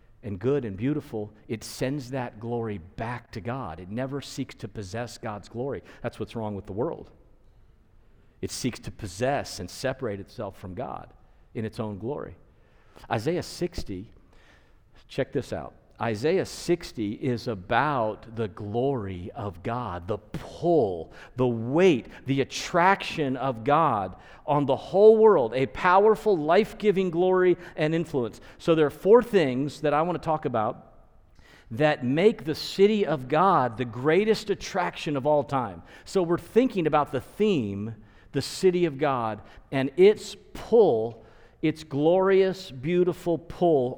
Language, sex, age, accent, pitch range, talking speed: English, male, 50-69, American, 110-155 Hz, 145 wpm